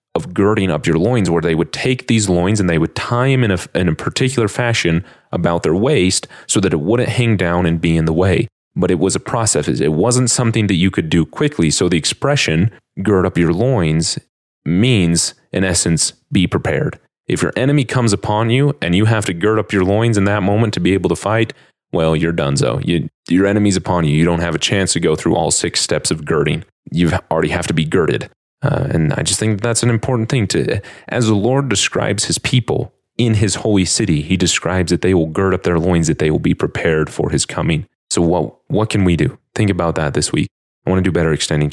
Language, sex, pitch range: English, male, 85-110 Hz